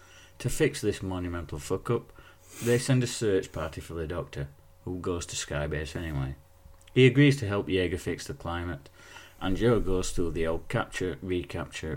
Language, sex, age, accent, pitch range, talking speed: English, male, 40-59, British, 80-105 Hz, 165 wpm